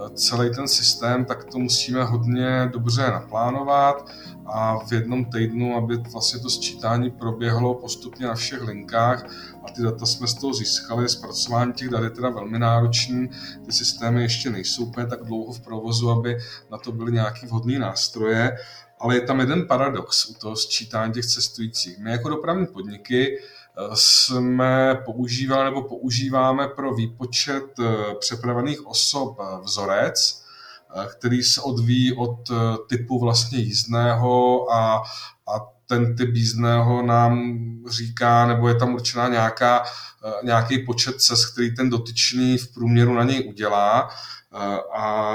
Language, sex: Czech, male